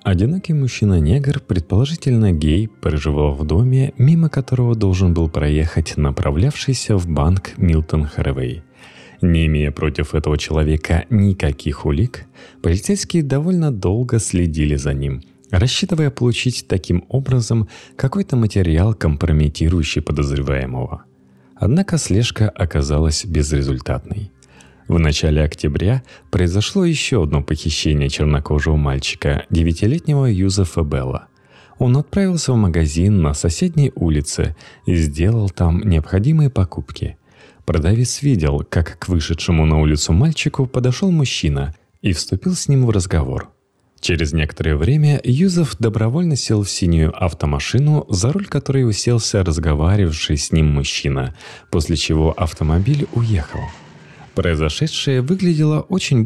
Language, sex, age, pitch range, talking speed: Russian, male, 30-49, 80-130 Hz, 115 wpm